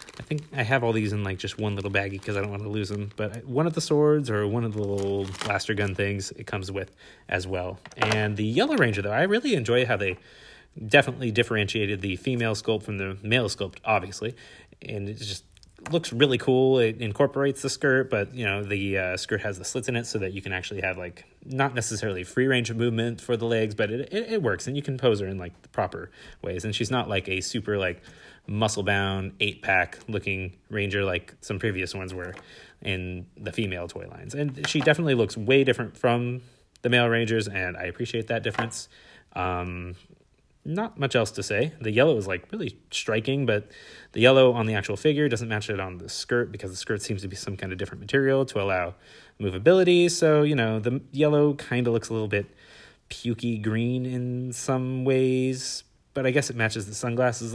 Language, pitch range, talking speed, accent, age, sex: English, 100-125 Hz, 215 wpm, American, 30-49, male